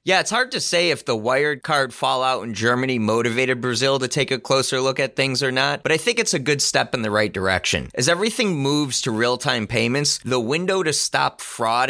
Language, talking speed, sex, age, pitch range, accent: English, 225 wpm, male, 30-49, 105-135 Hz, American